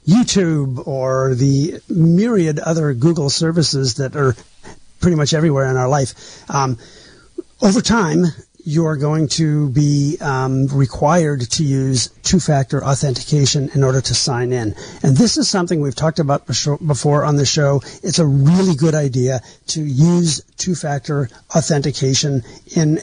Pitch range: 130-160 Hz